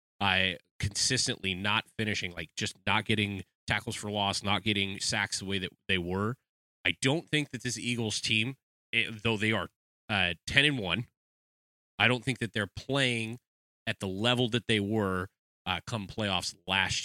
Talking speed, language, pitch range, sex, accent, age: 175 wpm, English, 90-115 Hz, male, American, 30-49